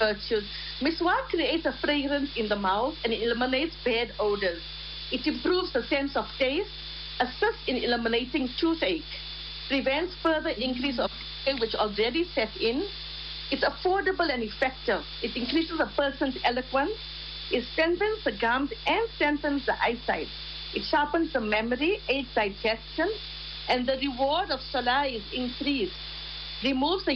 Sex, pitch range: female, 235-325 Hz